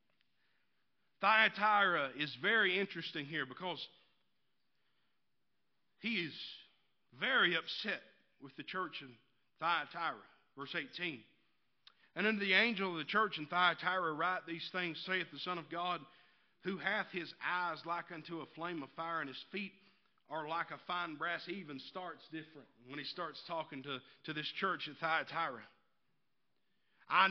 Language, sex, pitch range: English, male, 155-200 Hz